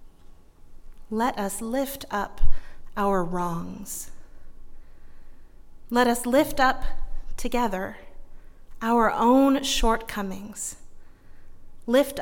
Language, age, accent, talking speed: English, 30-49, American, 75 wpm